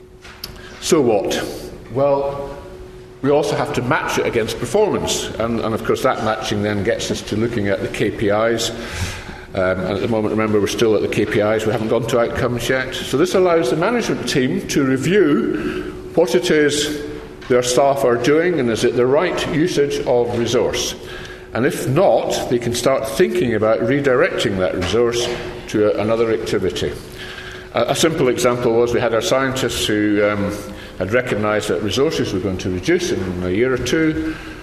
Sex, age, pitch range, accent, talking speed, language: male, 50-69, 105-135 Hz, British, 175 wpm, English